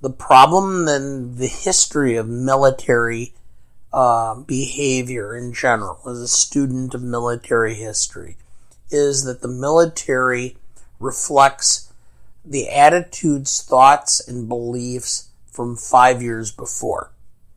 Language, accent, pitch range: English, American, 120-145 Hz